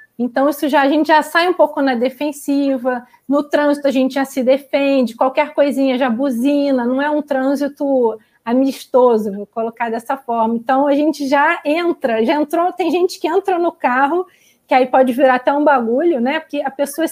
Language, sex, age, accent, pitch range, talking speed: Portuguese, female, 20-39, Brazilian, 230-285 Hz, 185 wpm